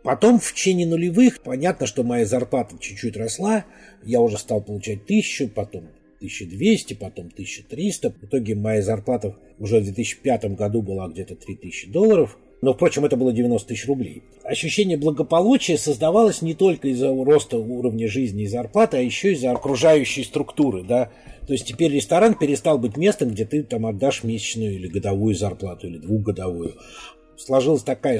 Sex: male